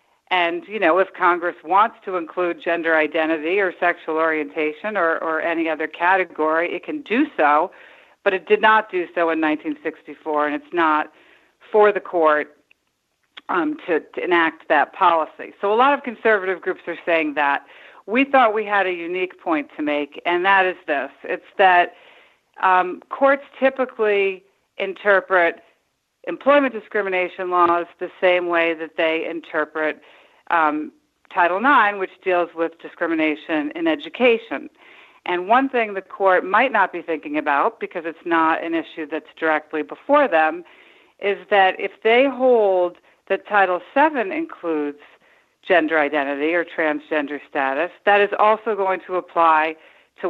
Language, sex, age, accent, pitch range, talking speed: English, female, 50-69, American, 160-220 Hz, 155 wpm